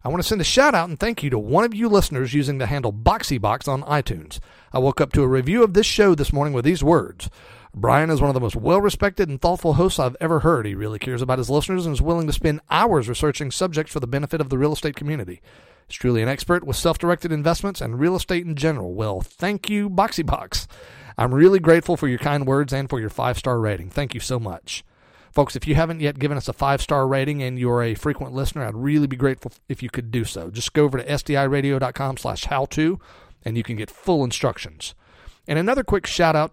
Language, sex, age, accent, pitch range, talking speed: English, male, 40-59, American, 125-165 Hz, 235 wpm